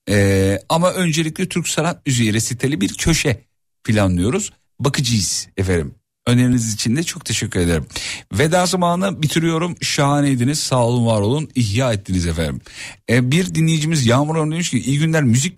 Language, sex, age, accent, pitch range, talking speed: Turkish, male, 50-69, native, 105-145 Hz, 145 wpm